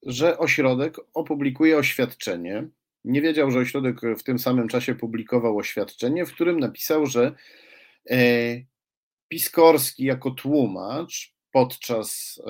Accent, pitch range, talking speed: native, 115-155 Hz, 105 wpm